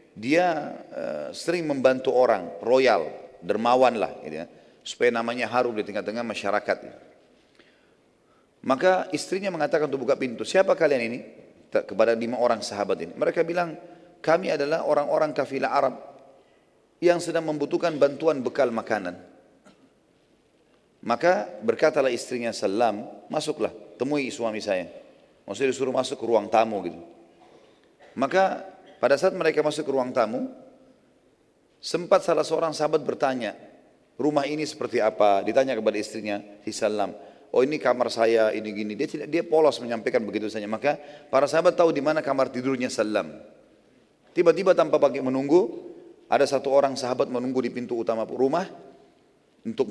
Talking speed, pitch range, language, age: 140 wpm, 120-165 Hz, Indonesian, 30-49